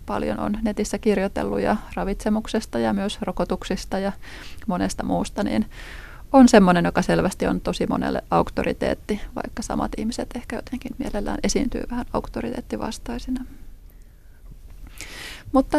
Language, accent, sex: Finnish, native, female